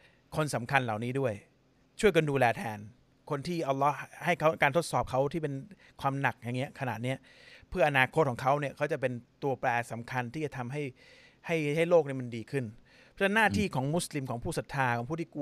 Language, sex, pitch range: Thai, male, 130-160 Hz